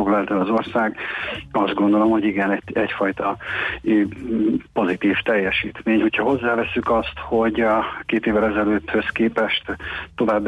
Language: Hungarian